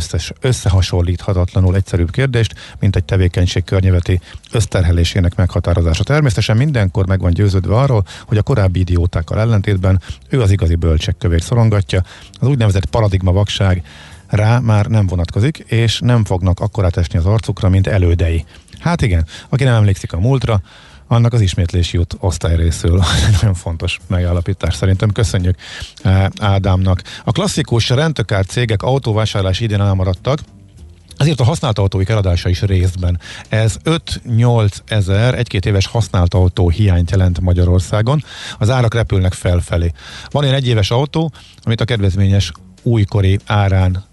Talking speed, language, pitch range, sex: 135 wpm, Hungarian, 90-110 Hz, male